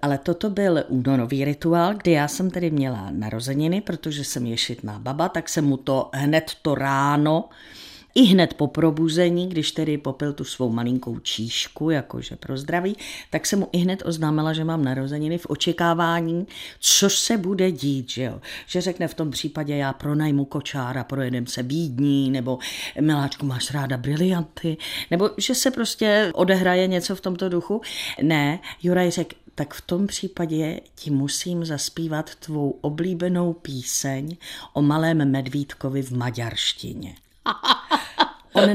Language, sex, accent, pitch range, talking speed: Czech, female, native, 140-185 Hz, 150 wpm